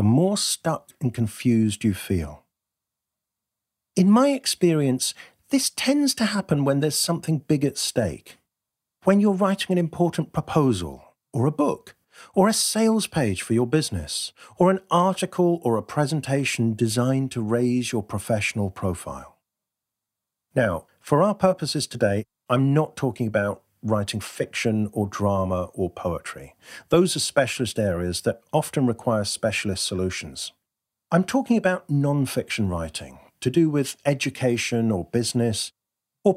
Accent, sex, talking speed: British, male, 140 wpm